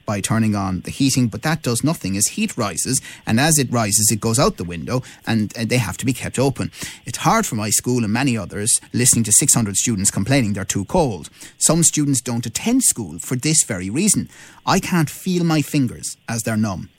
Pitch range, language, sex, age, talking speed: 105-150 Hz, English, male, 30-49, 220 wpm